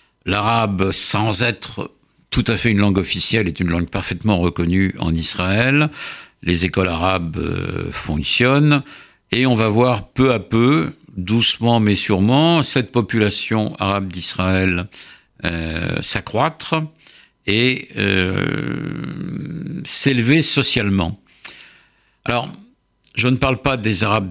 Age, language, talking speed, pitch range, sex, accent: 60-79, French, 115 wpm, 85-120 Hz, male, French